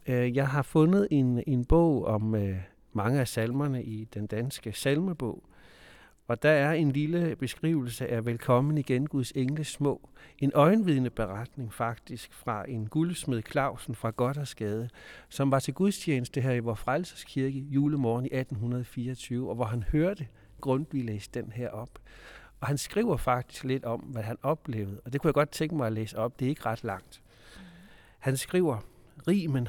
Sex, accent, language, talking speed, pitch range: male, native, Danish, 170 wpm, 120-150 Hz